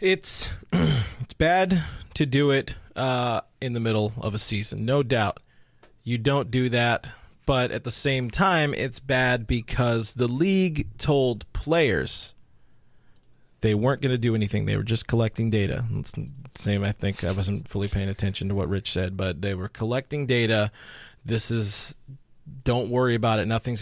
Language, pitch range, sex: English, 110-135 Hz, male